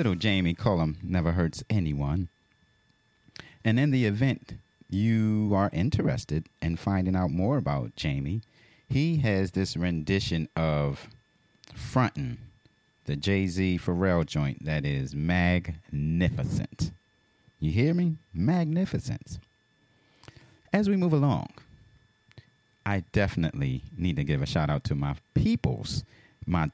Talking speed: 115 wpm